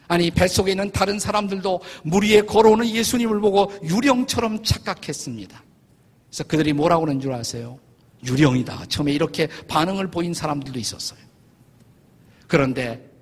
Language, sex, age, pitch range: Korean, male, 50-69, 130-195 Hz